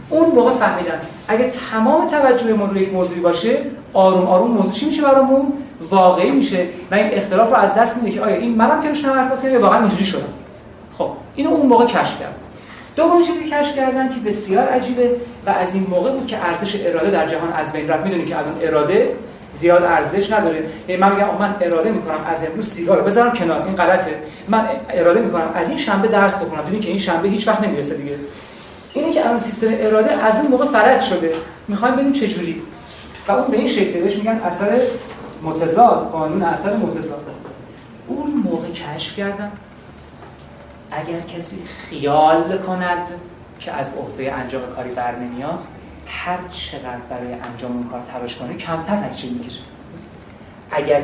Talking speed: 170 wpm